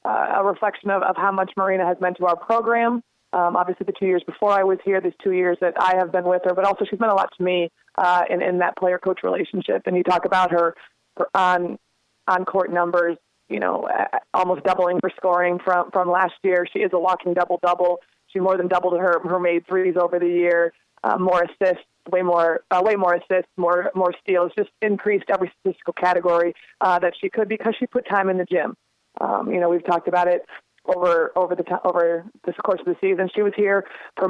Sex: female